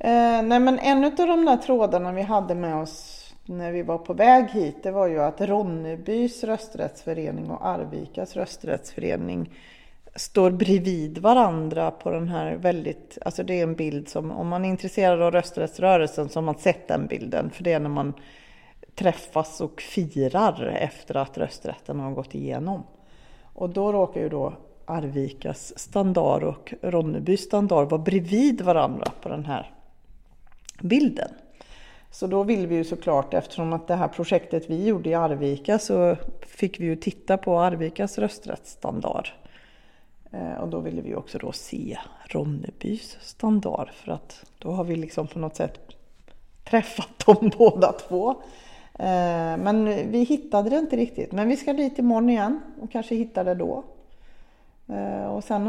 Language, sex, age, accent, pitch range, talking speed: Swedish, female, 40-59, native, 165-220 Hz, 160 wpm